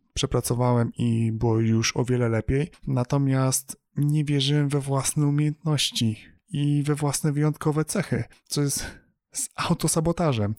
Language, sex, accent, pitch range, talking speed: Polish, male, native, 120-145 Hz, 125 wpm